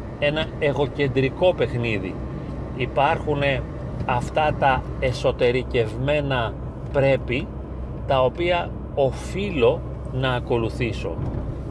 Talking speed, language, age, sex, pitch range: 65 wpm, Greek, 40-59, male, 120-155 Hz